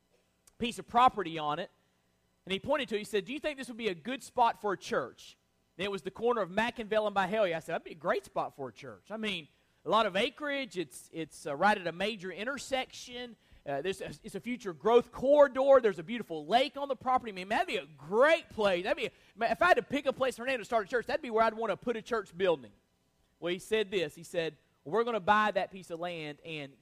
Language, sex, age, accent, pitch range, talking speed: English, male, 30-49, American, 140-235 Hz, 270 wpm